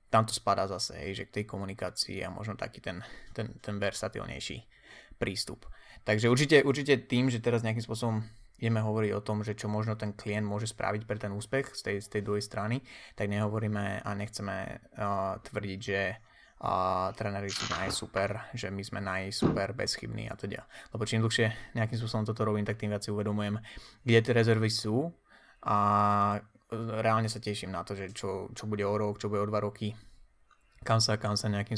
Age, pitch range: 20-39, 105-115 Hz